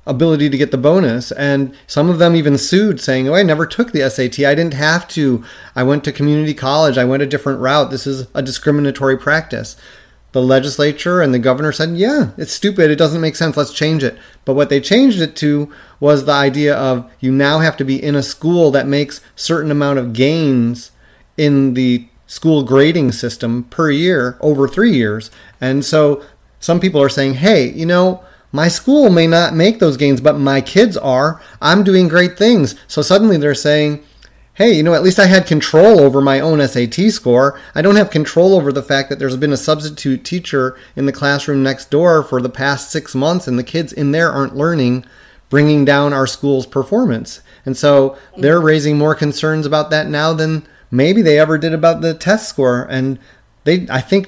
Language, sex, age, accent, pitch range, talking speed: English, male, 30-49, American, 135-160 Hz, 205 wpm